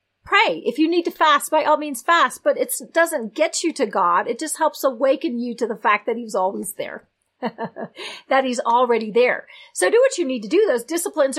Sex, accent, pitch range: female, American, 230-310 Hz